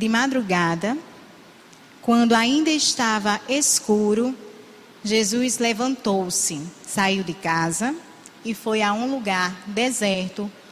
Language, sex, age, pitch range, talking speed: Portuguese, female, 20-39, 200-250 Hz, 95 wpm